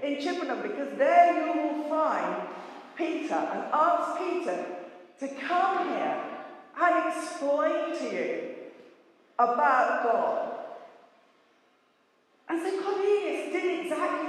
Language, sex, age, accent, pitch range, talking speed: English, female, 40-59, British, 250-355 Hz, 105 wpm